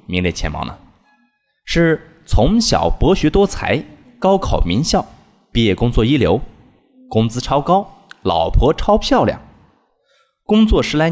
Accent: native